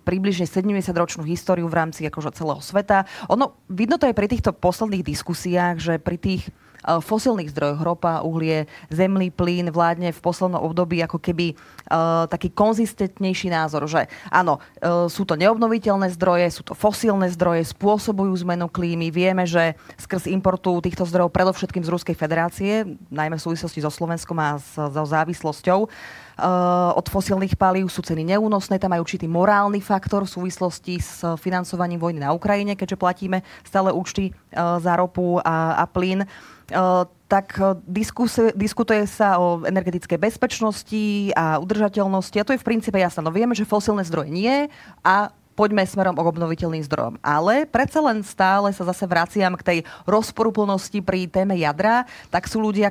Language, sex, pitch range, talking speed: Slovak, female, 170-200 Hz, 160 wpm